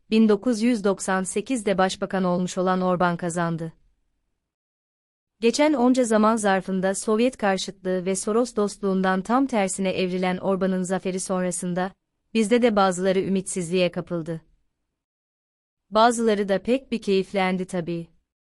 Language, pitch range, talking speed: Turkish, 185-215 Hz, 105 wpm